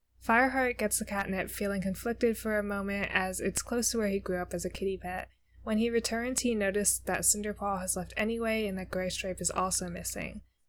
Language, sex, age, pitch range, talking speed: English, female, 20-39, 190-225 Hz, 210 wpm